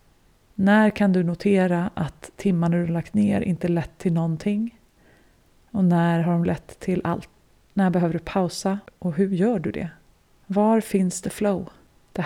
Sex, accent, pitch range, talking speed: female, native, 170-205 Hz, 175 wpm